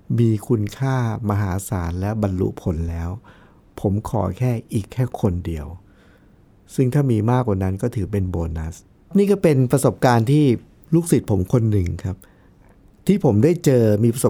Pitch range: 100-125 Hz